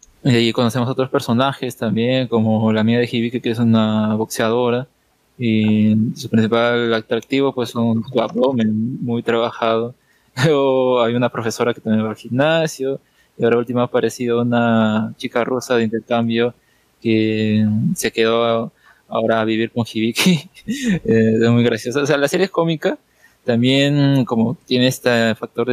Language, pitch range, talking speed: Spanish, 115-130 Hz, 150 wpm